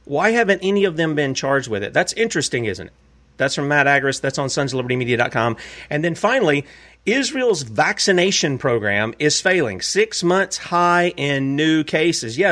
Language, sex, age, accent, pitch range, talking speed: English, male, 40-59, American, 120-165 Hz, 170 wpm